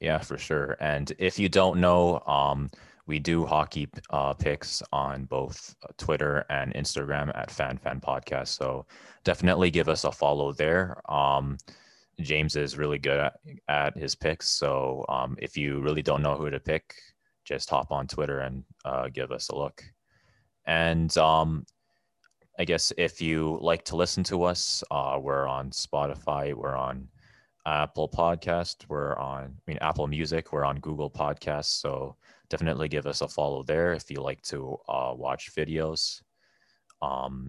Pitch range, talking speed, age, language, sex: 70-80 Hz, 165 wpm, 30-49, English, male